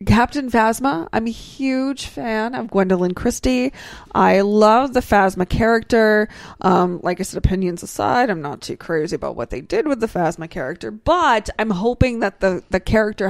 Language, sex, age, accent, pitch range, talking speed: English, female, 20-39, American, 175-215 Hz, 175 wpm